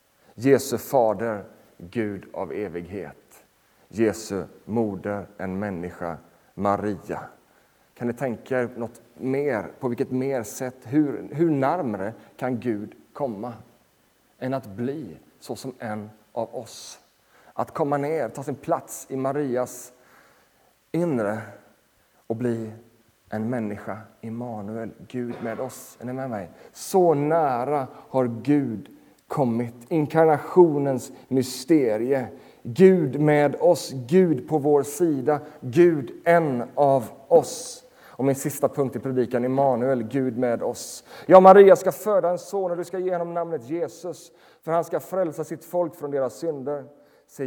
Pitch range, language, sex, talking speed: 115-150 Hz, Swedish, male, 130 wpm